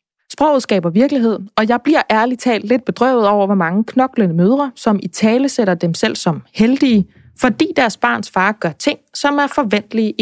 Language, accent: Danish, native